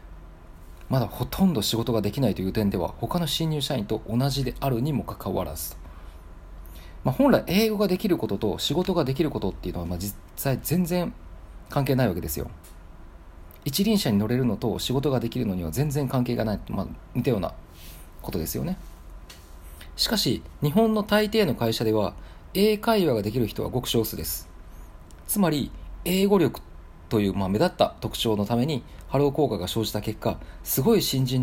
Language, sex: Japanese, male